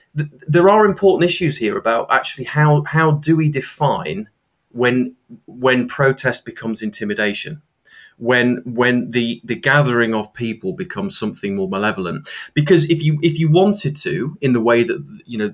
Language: English